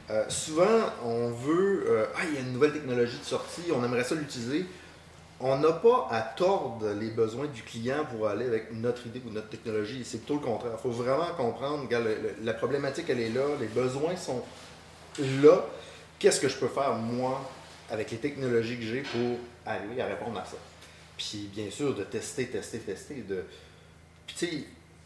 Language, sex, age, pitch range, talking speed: French, male, 30-49, 110-150 Hz, 200 wpm